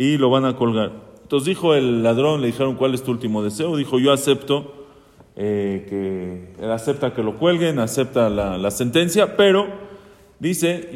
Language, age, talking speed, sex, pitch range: English, 40-59, 170 wpm, male, 115-145 Hz